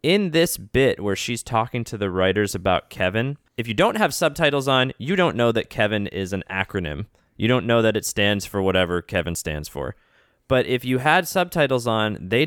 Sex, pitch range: male, 100-140 Hz